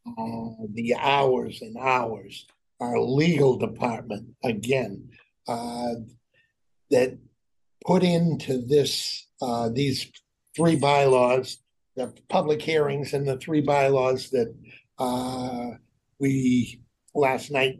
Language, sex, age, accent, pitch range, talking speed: English, male, 60-79, American, 120-140 Hz, 100 wpm